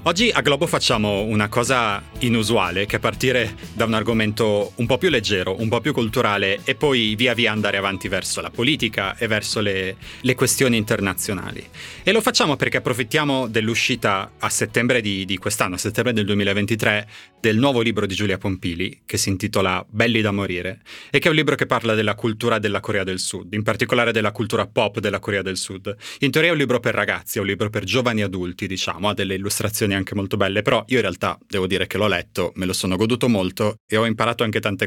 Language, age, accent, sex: Italian, 30-49, native, male